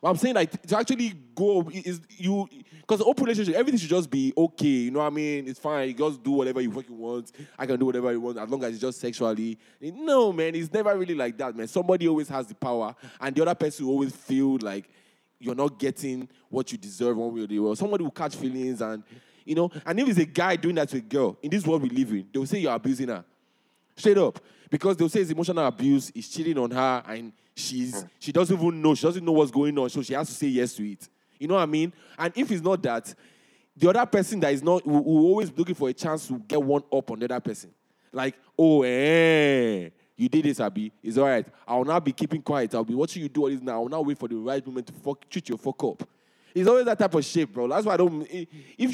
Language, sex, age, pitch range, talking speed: English, male, 20-39, 125-175 Hz, 260 wpm